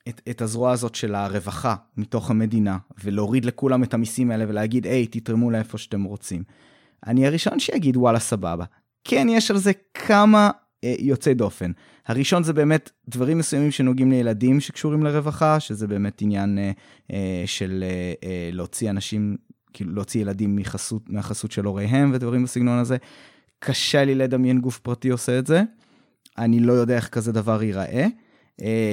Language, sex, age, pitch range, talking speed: Hebrew, male, 20-39, 110-135 Hz, 155 wpm